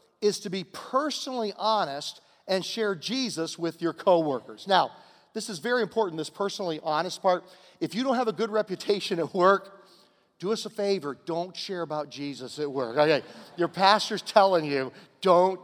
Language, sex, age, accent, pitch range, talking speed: English, male, 50-69, American, 160-215 Hz, 175 wpm